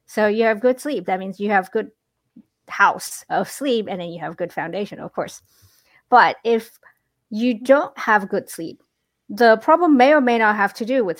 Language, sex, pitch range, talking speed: English, female, 185-235 Hz, 205 wpm